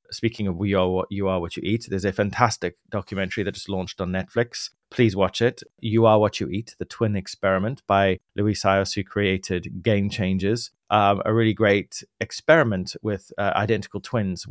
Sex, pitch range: male, 95-110 Hz